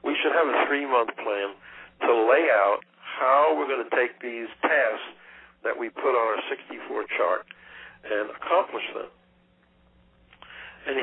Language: English